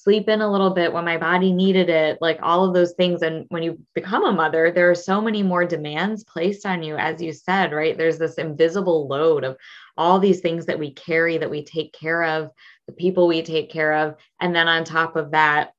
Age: 20-39